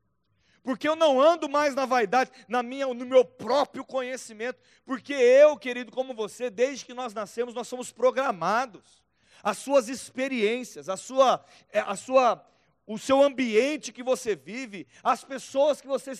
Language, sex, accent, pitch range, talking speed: Portuguese, male, Brazilian, 230-285 Hz, 155 wpm